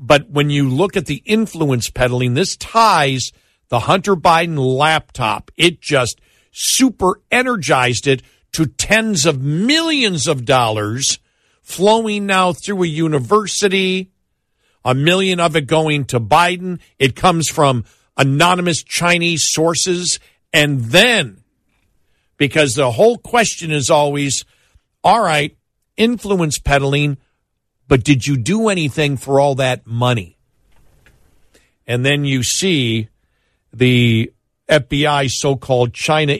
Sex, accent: male, American